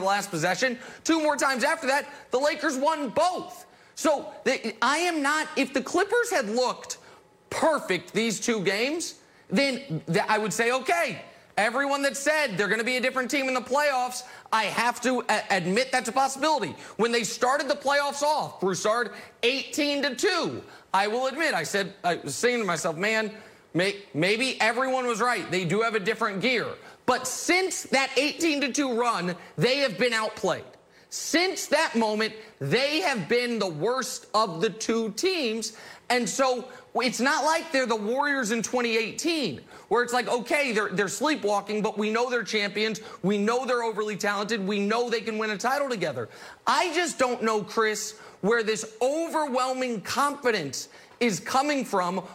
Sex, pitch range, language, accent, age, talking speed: male, 215-280 Hz, English, American, 30-49, 165 wpm